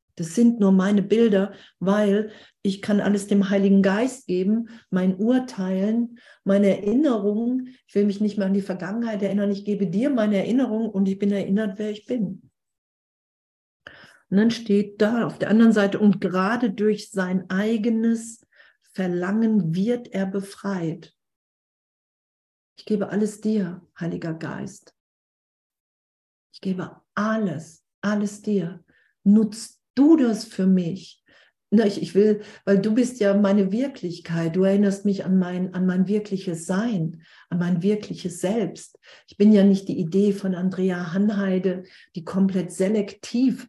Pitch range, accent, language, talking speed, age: 185-215 Hz, German, German, 145 wpm, 50-69